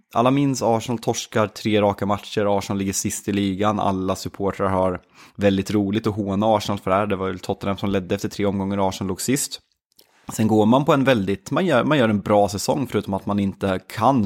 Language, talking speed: Swedish, 225 wpm